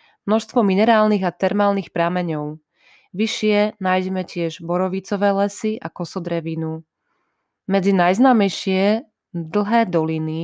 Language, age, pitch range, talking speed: Slovak, 20-39, 170-205 Hz, 90 wpm